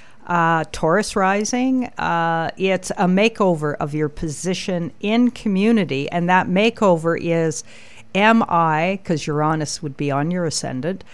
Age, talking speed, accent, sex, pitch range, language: 50-69, 135 wpm, American, female, 150-190 Hz, English